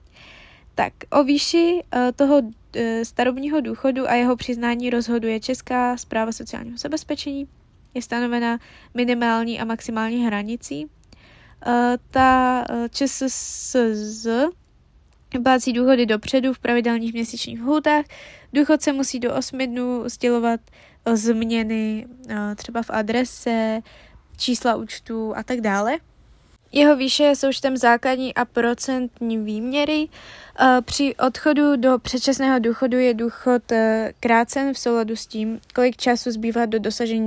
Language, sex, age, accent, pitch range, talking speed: Czech, female, 20-39, native, 230-265 Hz, 120 wpm